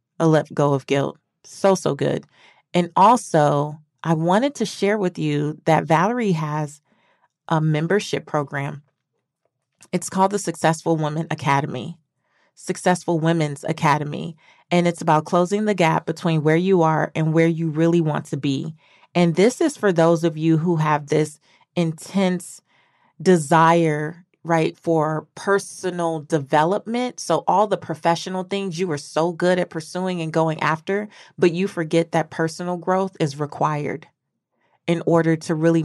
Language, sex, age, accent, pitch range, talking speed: English, female, 30-49, American, 155-180 Hz, 150 wpm